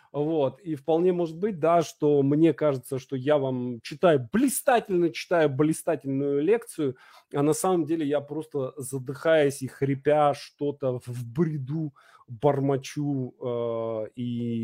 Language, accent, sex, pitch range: Russian, native, male, 140-190 Hz